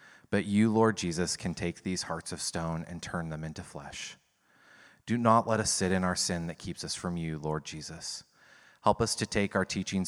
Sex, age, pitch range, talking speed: male, 30-49, 85-95 Hz, 215 wpm